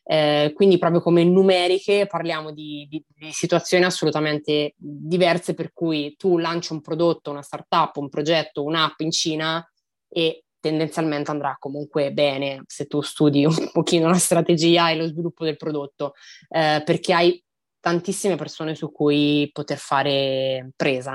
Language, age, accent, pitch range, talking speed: Italian, 20-39, native, 150-170 Hz, 150 wpm